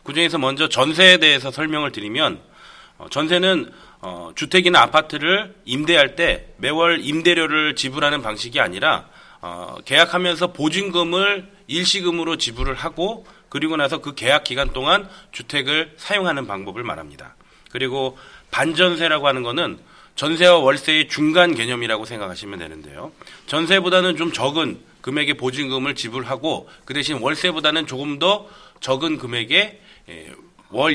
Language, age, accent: Russian, 30-49, Korean